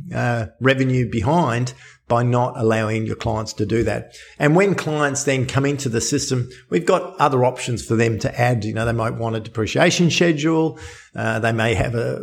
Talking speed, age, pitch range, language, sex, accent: 190 wpm, 50-69, 115-145 Hz, English, male, Australian